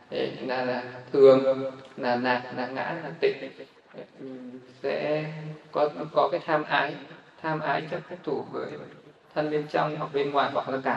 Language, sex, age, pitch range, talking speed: Vietnamese, male, 20-39, 135-155 Hz, 165 wpm